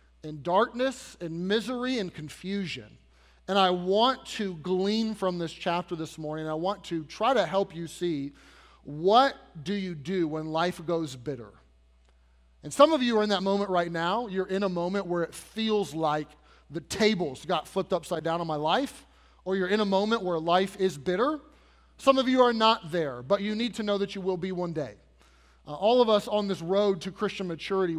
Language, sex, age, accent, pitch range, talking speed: English, male, 30-49, American, 165-225 Hz, 205 wpm